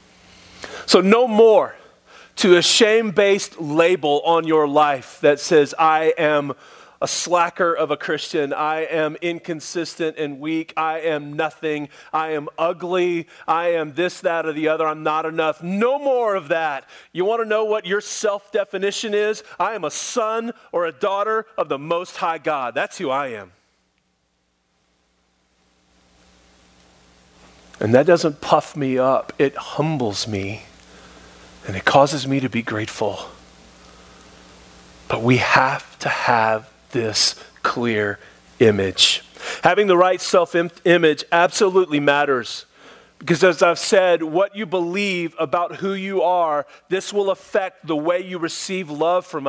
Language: English